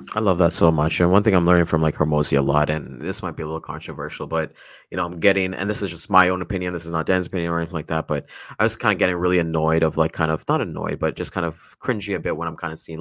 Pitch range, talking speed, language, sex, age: 80-95 Hz, 320 wpm, English, male, 20-39